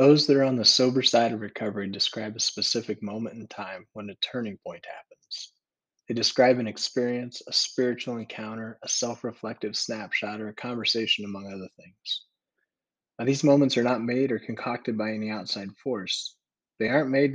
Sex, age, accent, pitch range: male, 20-39, American, 105-125 Hz